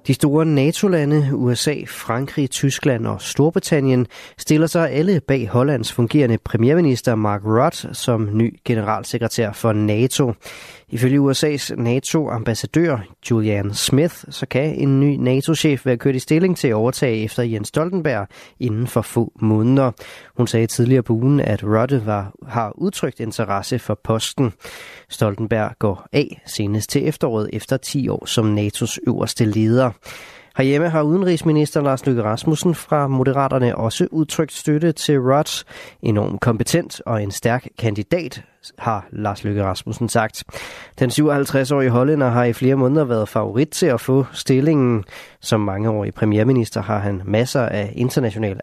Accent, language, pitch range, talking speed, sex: native, Danish, 110-145 Hz, 145 wpm, male